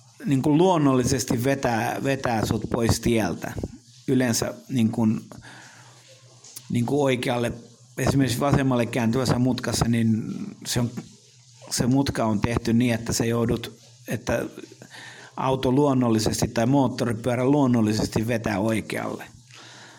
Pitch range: 120-135 Hz